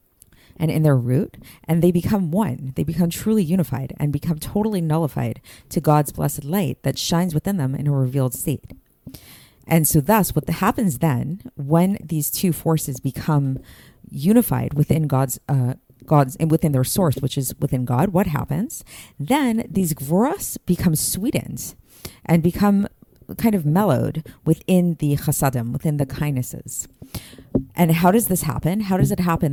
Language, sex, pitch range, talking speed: English, female, 135-180 Hz, 165 wpm